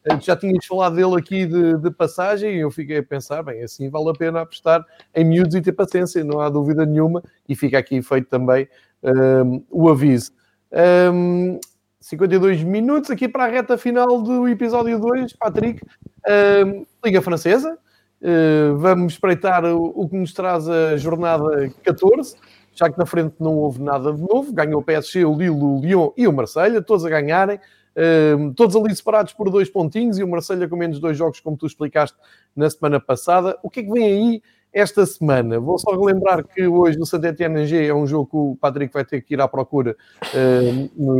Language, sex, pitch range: Portuguese, male, 145-190 Hz